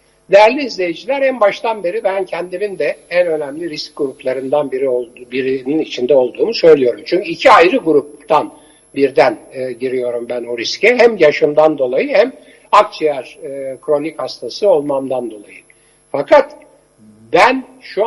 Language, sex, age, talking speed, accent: Turkish, male, 60-79, 135 wpm, native